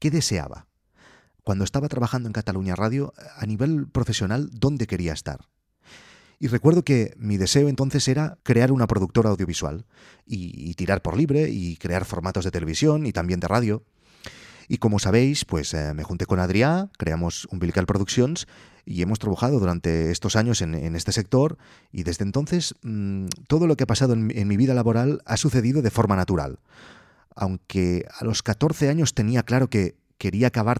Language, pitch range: Spanish, 95-125 Hz